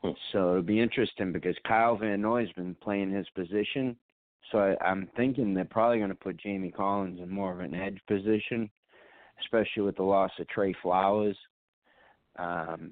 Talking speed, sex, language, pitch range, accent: 175 wpm, male, English, 85-105 Hz, American